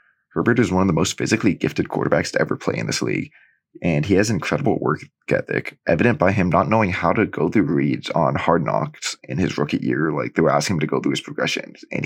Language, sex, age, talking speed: English, male, 20-39, 245 wpm